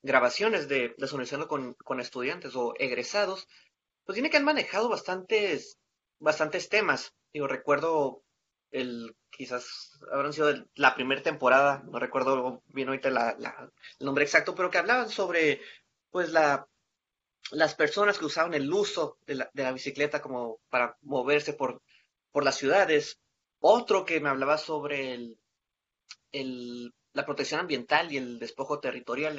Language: Spanish